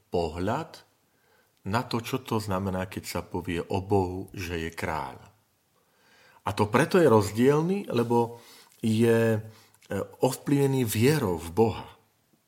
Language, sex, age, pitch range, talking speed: Slovak, male, 40-59, 95-120 Hz, 120 wpm